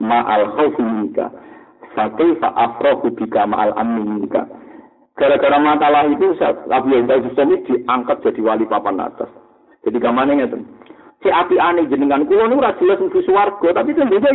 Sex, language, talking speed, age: male, Indonesian, 100 wpm, 50-69